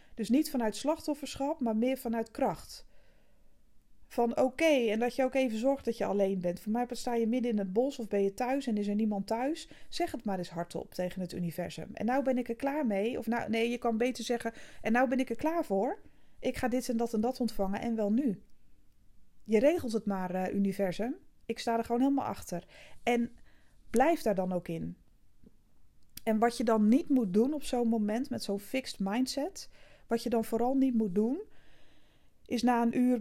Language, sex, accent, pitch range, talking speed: Dutch, female, Dutch, 200-245 Hz, 215 wpm